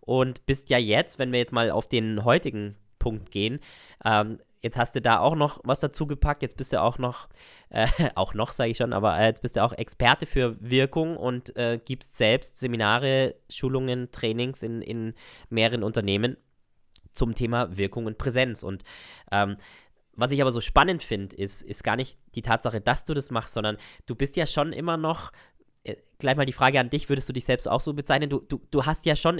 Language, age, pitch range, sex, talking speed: German, 20-39, 110-140 Hz, male, 205 wpm